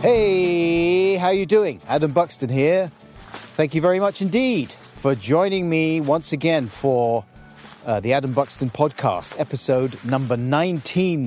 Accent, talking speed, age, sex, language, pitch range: British, 145 wpm, 40-59, male, English, 105-145 Hz